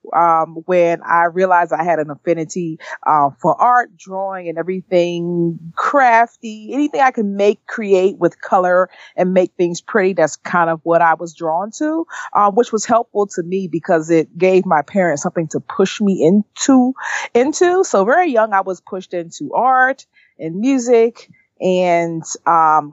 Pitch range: 160-215 Hz